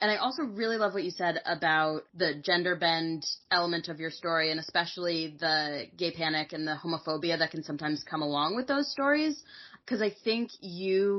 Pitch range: 160-210 Hz